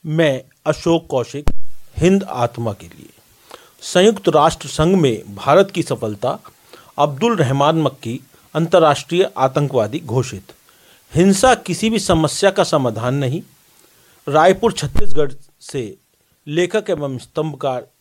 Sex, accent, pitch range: male, native, 140-190 Hz